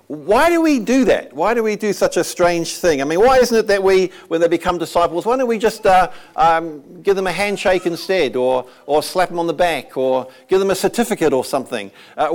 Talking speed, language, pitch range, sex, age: 245 wpm, English, 175-235 Hz, male, 50-69